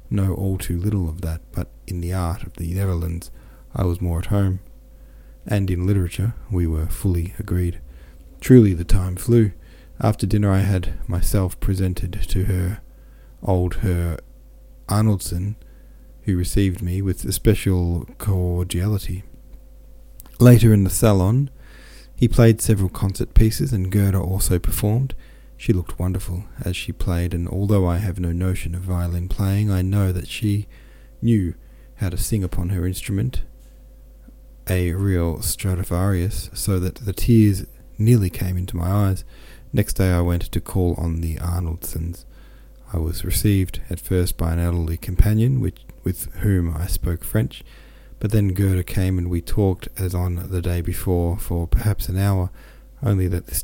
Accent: Australian